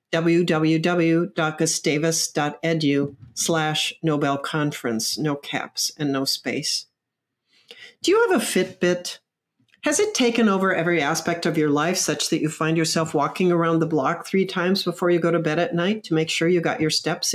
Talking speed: 165 wpm